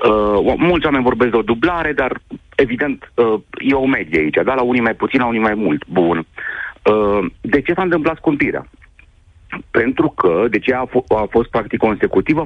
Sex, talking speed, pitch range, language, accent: male, 195 wpm, 95-130 Hz, Romanian, native